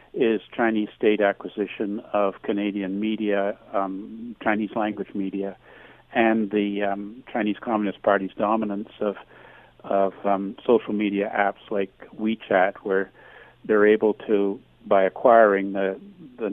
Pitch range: 100-110 Hz